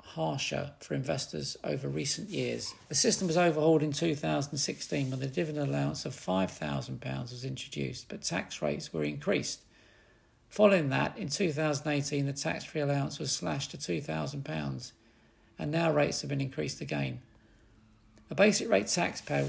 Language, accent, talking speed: English, British, 145 wpm